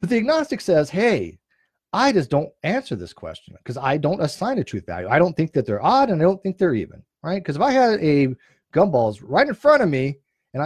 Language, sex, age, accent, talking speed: English, male, 40-59, American, 240 wpm